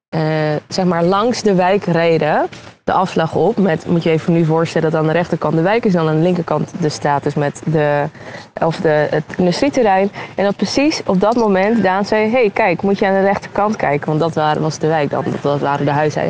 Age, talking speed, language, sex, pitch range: 20-39, 230 wpm, Dutch, female, 155-205 Hz